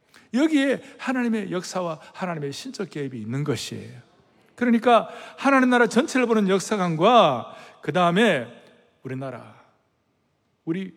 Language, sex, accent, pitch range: Korean, male, native, 130-195 Hz